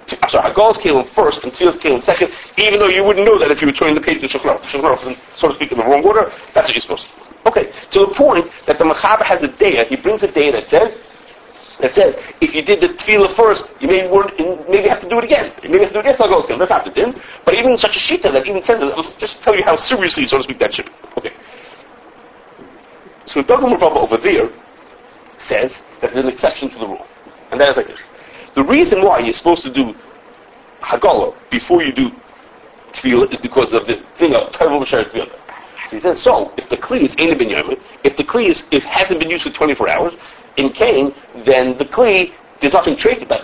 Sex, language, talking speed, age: male, English, 235 wpm, 40-59